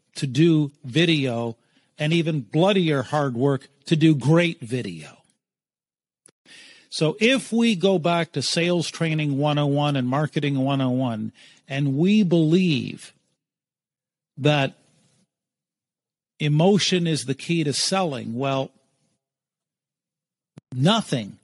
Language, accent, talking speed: English, American, 100 wpm